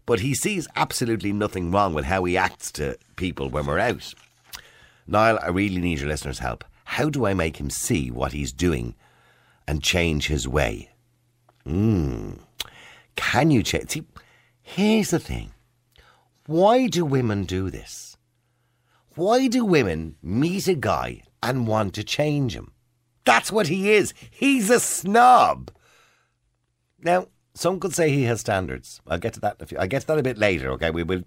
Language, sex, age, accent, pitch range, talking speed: English, male, 50-69, British, 85-145 Hz, 170 wpm